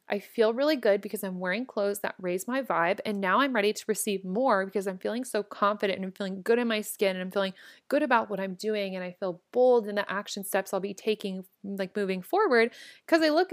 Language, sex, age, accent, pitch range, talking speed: English, female, 20-39, American, 190-230 Hz, 250 wpm